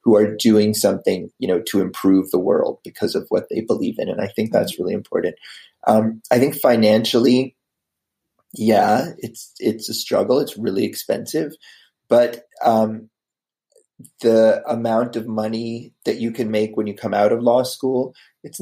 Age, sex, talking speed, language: 30-49, male, 170 wpm, English